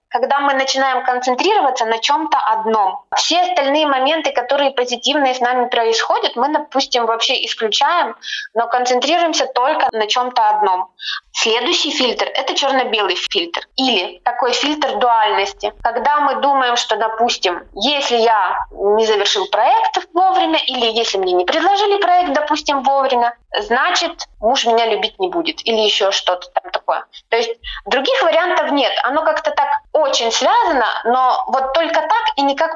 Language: Russian